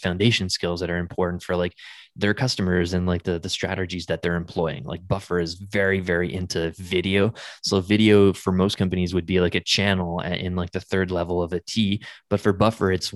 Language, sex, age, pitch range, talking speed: English, male, 20-39, 90-100 Hz, 210 wpm